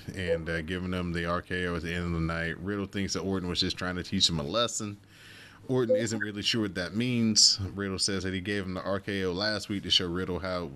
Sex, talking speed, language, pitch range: male, 255 wpm, English, 85-105 Hz